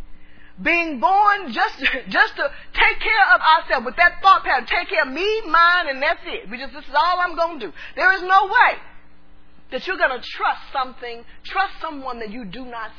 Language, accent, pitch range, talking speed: English, American, 235-380 Hz, 210 wpm